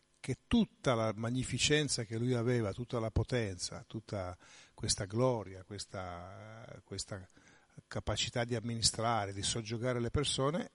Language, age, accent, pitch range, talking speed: Italian, 50-69, native, 100-125 Hz, 125 wpm